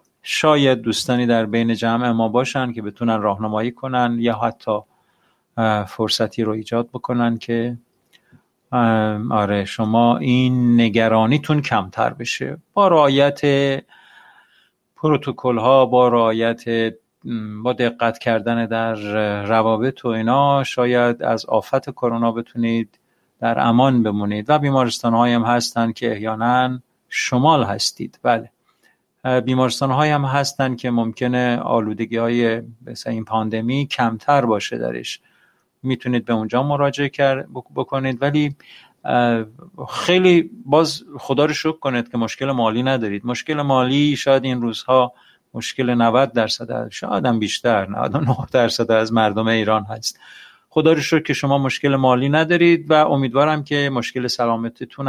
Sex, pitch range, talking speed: male, 115-135 Hz, 120 wpm